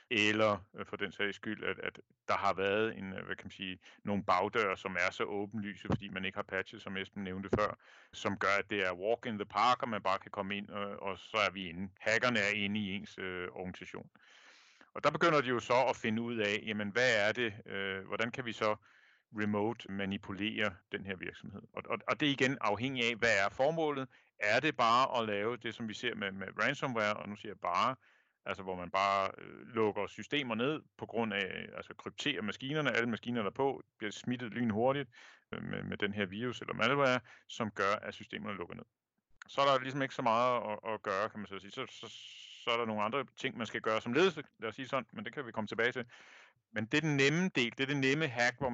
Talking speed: 240 wpm